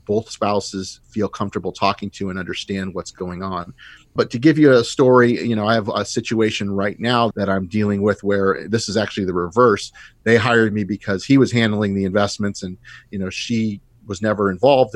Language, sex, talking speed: English, male, 205 wpm